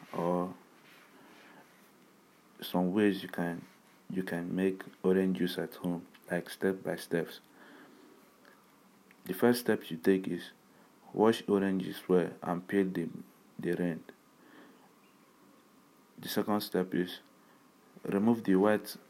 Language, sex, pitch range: English, male, 90-105 Hz